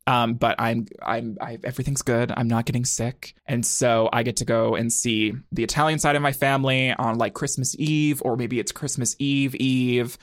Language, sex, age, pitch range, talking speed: English, male, 20-39, 115-145 Hz, 205 wpm